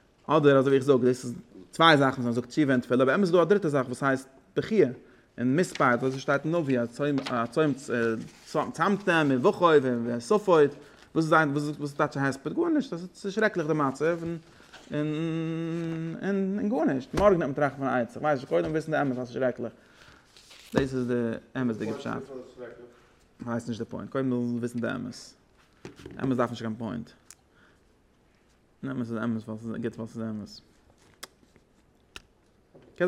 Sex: male